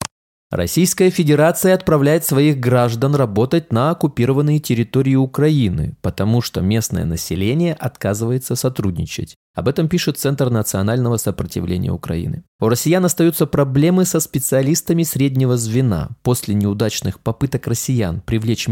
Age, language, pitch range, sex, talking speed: 20-39, Russian, 105-150 Hz, male, 115 wpm